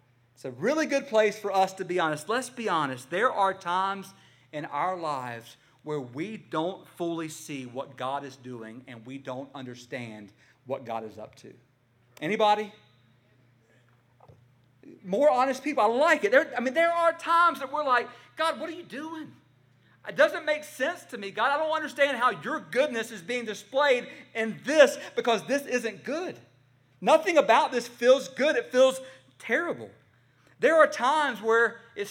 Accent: American